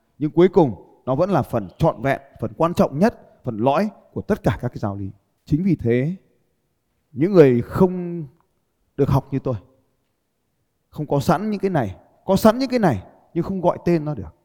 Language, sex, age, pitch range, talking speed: Vietnamese, male, 20-39, 110-155 Hz, 205 wpm